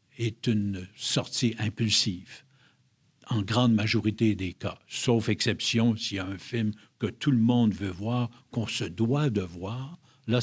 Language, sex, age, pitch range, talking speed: French, male, 50-69, 110-140 Hz, 160 wpm